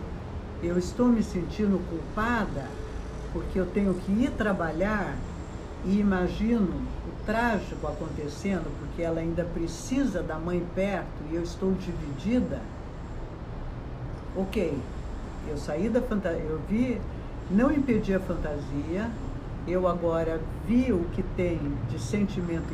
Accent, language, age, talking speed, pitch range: Brazilian, Portuguese, 60-79, 120 wpm, 155-205 Hz